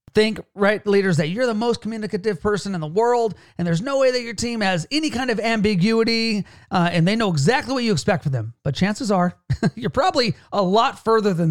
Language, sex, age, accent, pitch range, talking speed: English, male, 40-59, American, 165-235 Hz, 225 wpm